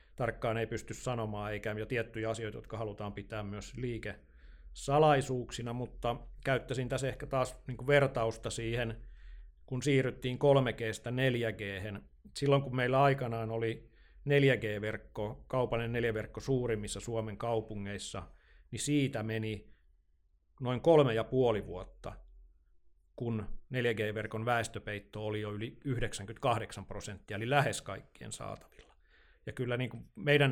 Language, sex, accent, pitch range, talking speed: Finnish, male, native, 105-130 Hz, 115 wpm